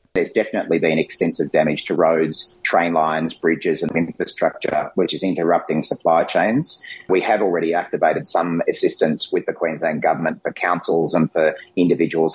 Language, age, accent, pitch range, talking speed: Italian, 30-49, Australian, 175-220 Hz, 155 wpm